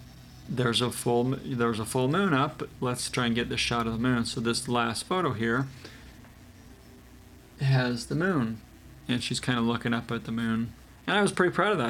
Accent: American